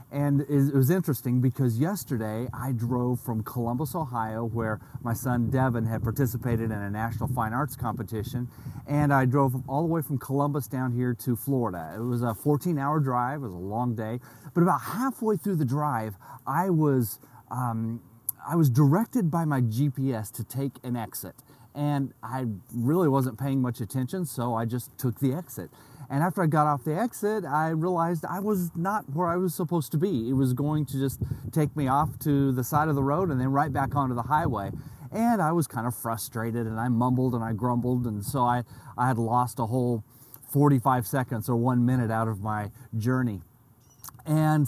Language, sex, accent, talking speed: English, male, American, 195 wpm